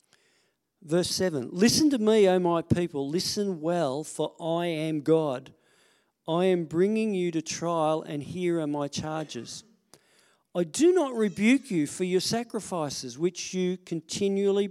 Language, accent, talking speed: English, Australian, 145 wpm